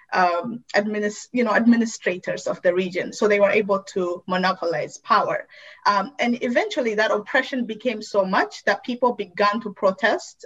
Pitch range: 195-245 Hz